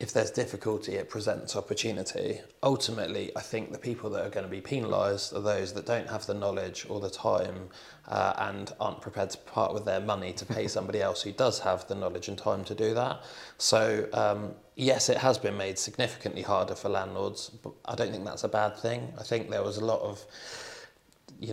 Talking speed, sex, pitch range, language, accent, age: 215 wpm, male, 100-115 Hz, English, British, 20-39